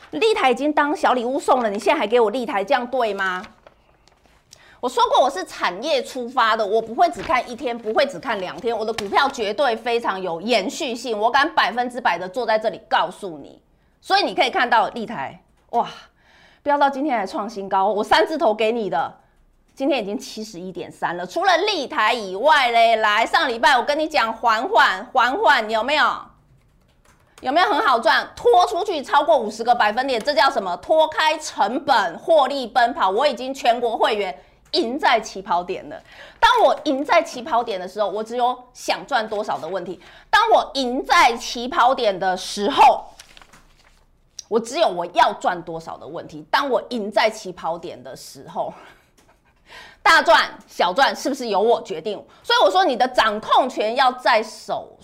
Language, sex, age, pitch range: Chinese, female, 30-49, 215-300 Hz